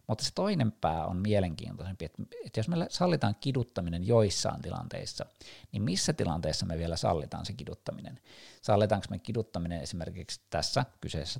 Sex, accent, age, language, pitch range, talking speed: male, native, 50-69, Finnish, 90-115 Hz, 140 wpm